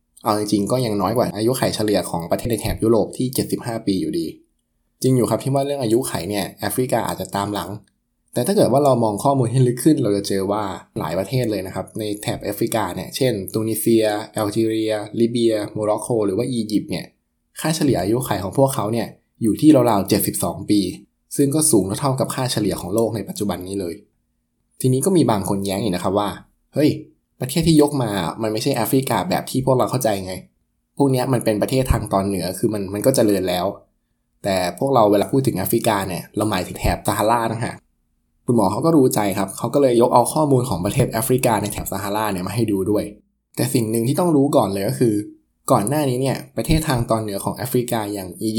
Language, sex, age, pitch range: Thai, male, 20-39, 100-130 Hz